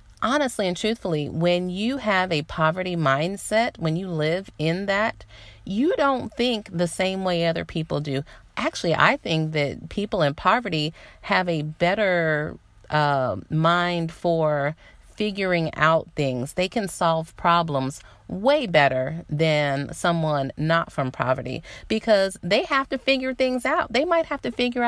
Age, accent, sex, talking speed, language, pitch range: 30-49, American, female, 150 wpm, English, 155-215 Hz